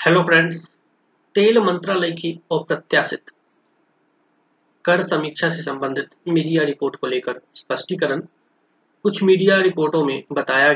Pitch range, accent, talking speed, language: 140-180 Hz, native, 110 wpm, Hindi